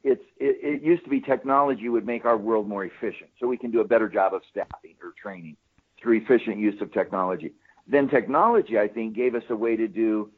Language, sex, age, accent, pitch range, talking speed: English, male, 50-69, American, 110-160 Hz, 225 wpm